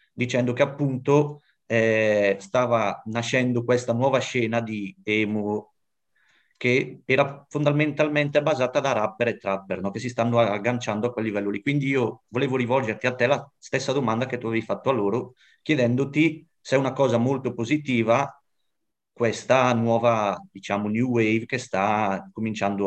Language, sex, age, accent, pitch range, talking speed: Italian, male, 30-49, native, 105-125 Hz, 150 wpm